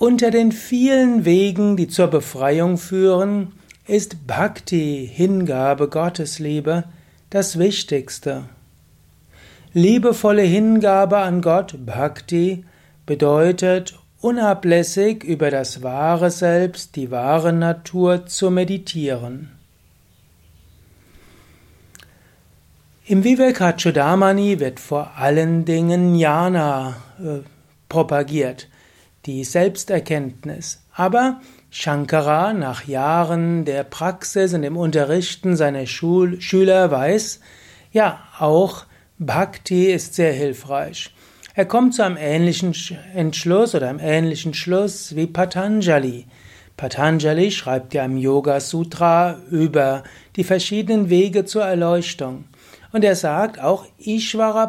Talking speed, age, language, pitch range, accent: 95 wpm, 60-79, German, 145-190 Hz, German